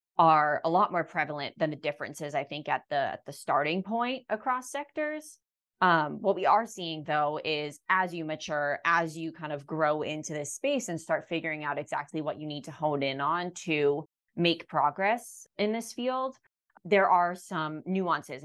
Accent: American